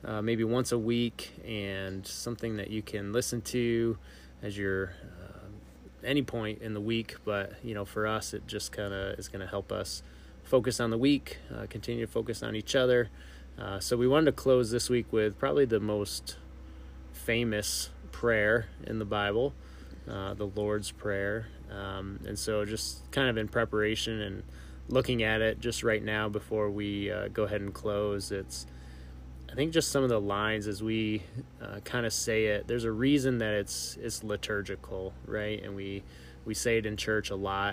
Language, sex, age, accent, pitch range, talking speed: English, male, 20-39, American, 95-110 Hz, 190 wpm